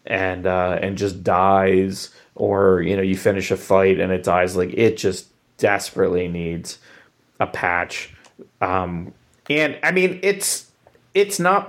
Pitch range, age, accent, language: 95-125 Hz, 30-49, American, English